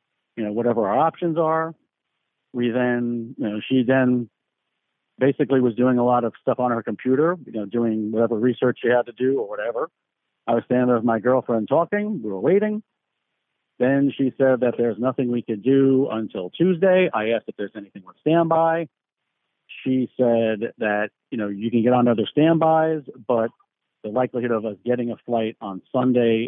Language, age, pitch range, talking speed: English, 50-69, 115-140 Hz, 190 wpm